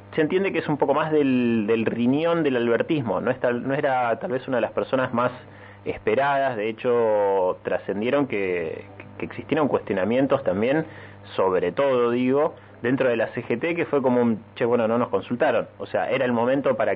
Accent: Argentinian